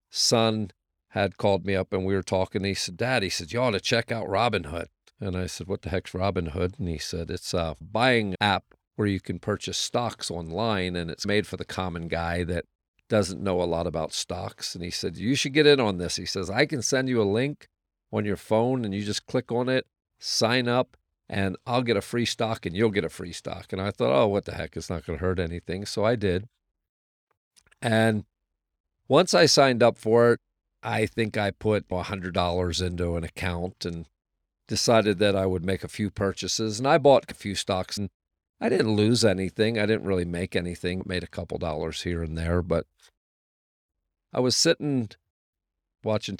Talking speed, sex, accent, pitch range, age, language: 210 wpm, male, American, 85-110 Hz, 50-69, English